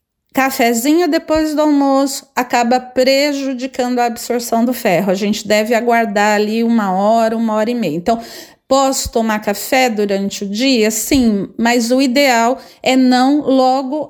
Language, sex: Portuguese, female